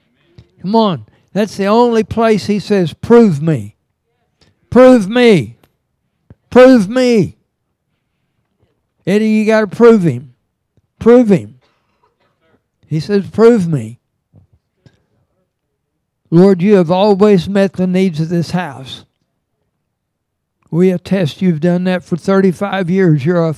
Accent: American